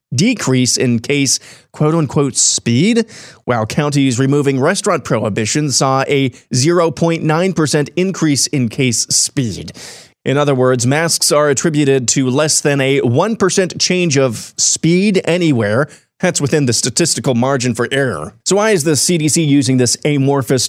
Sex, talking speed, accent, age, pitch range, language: male, 140 wpm, American, 30-49, 125-165 Hz, English